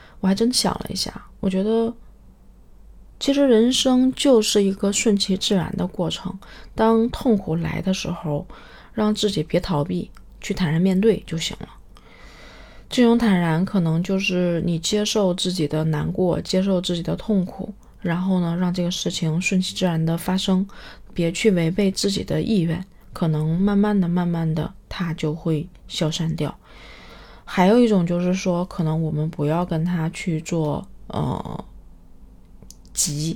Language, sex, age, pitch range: Chinese, female, 20-39, 165-205 Hz